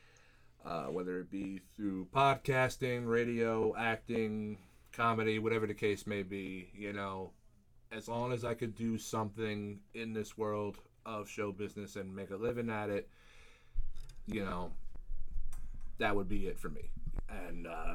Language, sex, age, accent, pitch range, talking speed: English, male, 30-49, American, 100-120 Hz, 145 wpm